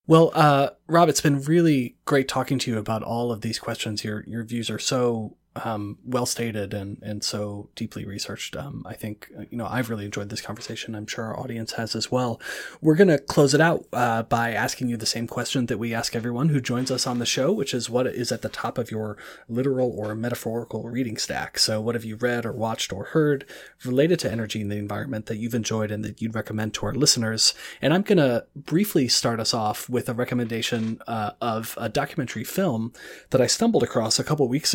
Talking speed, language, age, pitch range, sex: 225 wpm, English, 30-49, 110-130 Hz, male